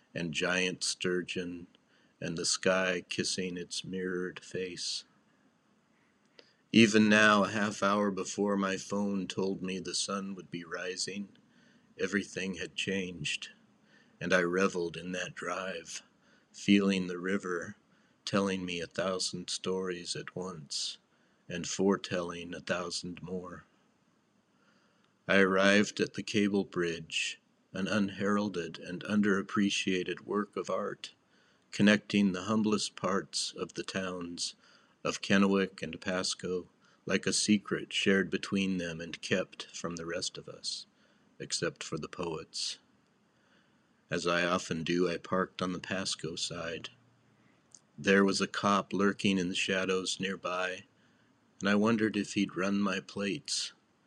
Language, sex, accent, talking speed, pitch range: English, male, American, 130 wpm, 90-100 Hz